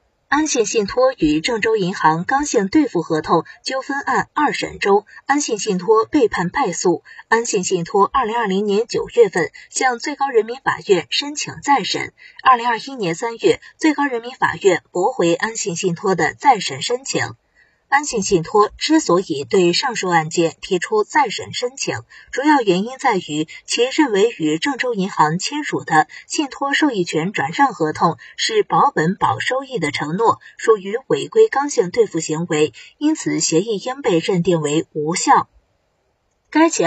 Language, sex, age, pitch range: Chinese, female, 20-39, 175-285 Hz